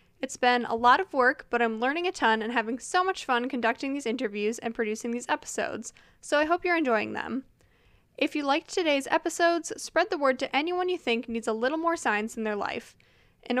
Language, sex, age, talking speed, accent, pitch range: English, female, 10-29, 220 wpm, American, 230-305 Hz